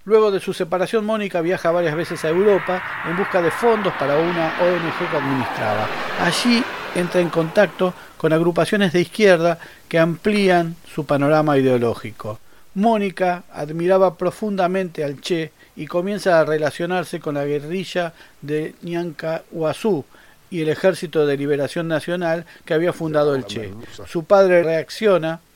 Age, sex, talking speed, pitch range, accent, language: 40-59, male, 145 wpm, 145-180 Hz, Argentinian, Spanish